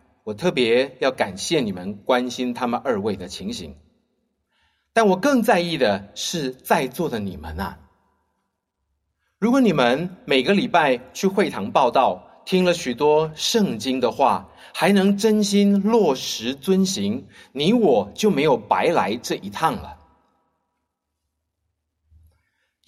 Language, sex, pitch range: Chinese, male, 115-190 Hz